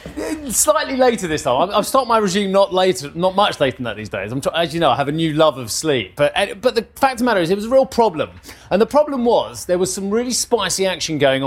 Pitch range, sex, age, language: 130-195 Hz, male, 30-49, English